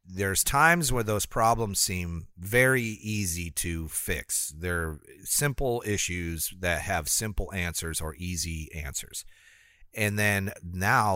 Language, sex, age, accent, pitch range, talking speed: English, male, 40-59, American, 85-110 Hz, 125 wpm